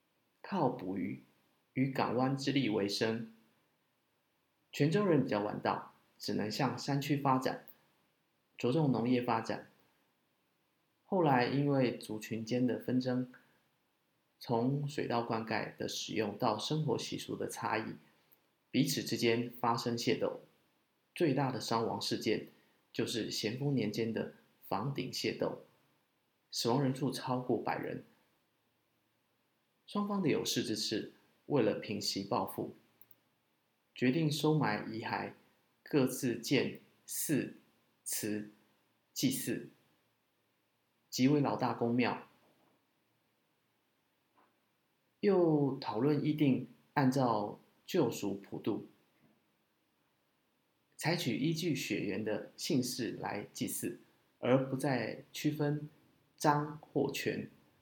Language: Chinese